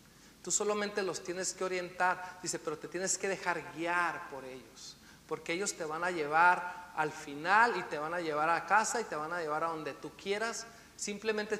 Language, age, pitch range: Spanish, 40-59, 175-250 Hz